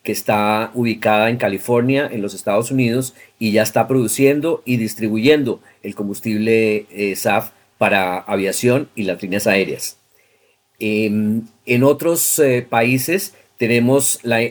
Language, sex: Spanish, male